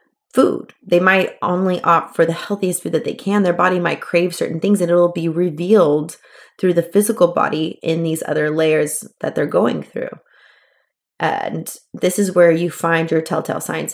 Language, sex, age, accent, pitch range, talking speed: English, female, 20-39, American, 160-185 Hz, 185 wpm